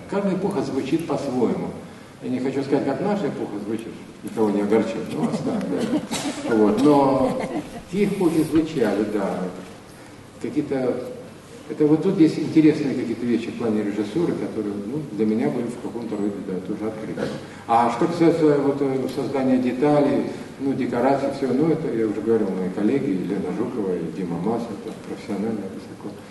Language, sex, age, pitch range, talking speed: Russian, male, 50-69, 110-140 Hz, 155 wpm